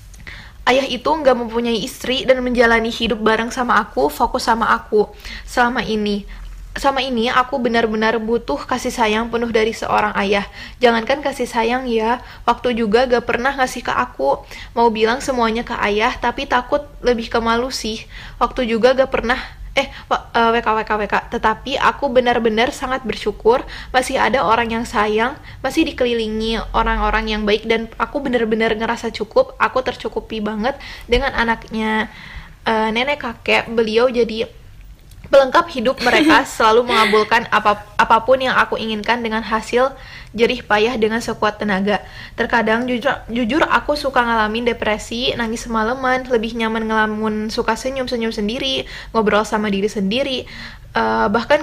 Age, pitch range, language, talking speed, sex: 10-29, 220-255 Hz, Indonesian, 145 wpm, female